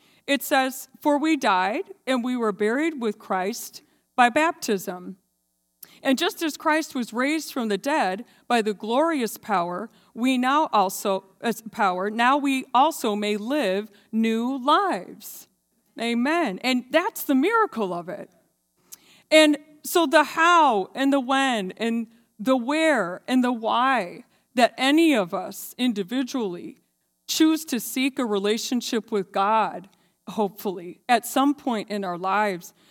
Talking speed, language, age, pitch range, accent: 140 wpm, English, 40-59, 205-275 Hz, American